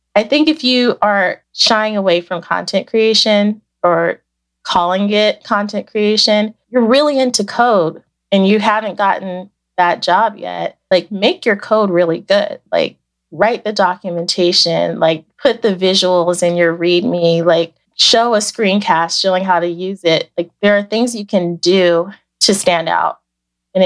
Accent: American